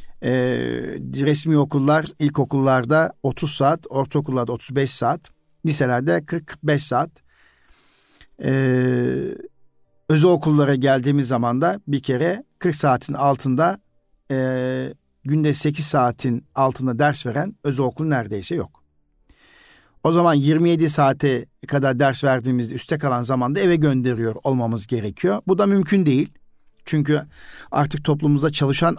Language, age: Turkish, 50-69